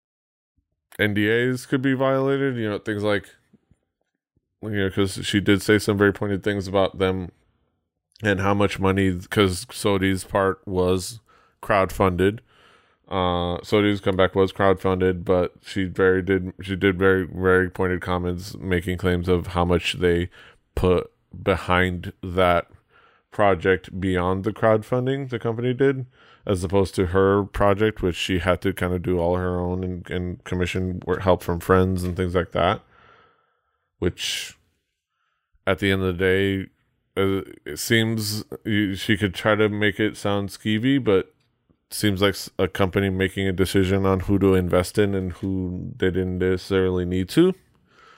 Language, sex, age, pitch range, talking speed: English, male, 20-39, 90-105 Hz, 150 wpm